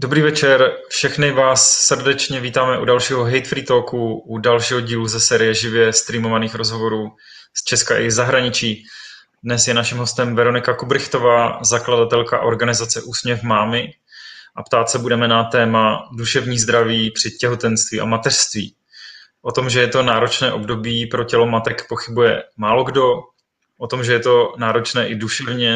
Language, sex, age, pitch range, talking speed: Czech, male, 20-39, 115-130 Hz, 150 wpm